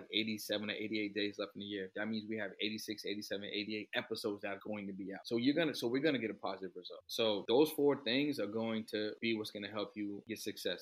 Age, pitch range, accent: 30-49, 105-130 Hz, American